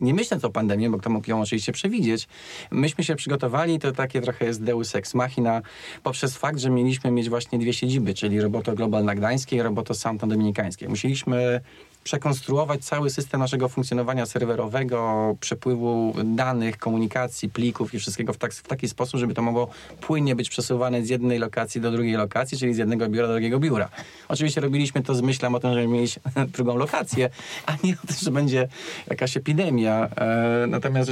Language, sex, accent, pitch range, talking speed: Polish, male, native, 110-135 Hz, 175 wpm